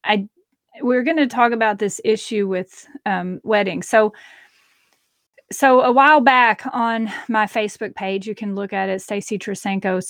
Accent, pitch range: American, 200-235 Hz